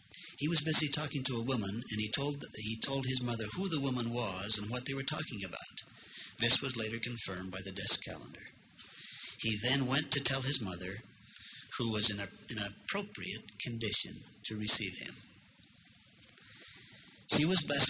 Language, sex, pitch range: English, male, 100-125 Hz